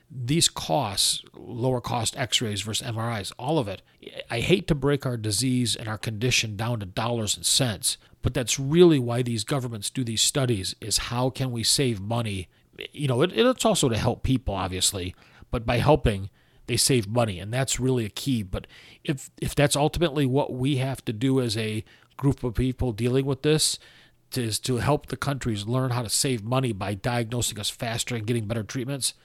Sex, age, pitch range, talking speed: male, 40-59, 110-135 Hz, 195 wpm